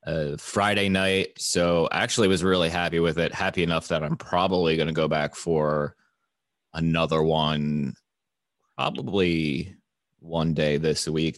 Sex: male